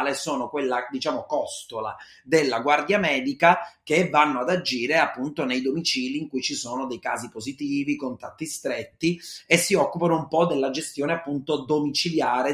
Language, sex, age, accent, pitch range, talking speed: Italian, male, 30-49, native, 115-165 Hz, 155 wpm